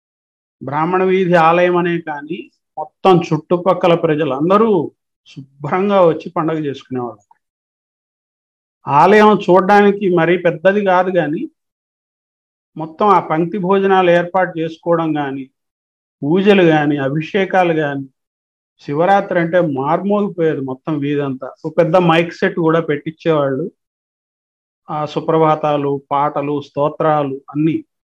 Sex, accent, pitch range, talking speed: male, native, 150-185 Hz, 100 wpm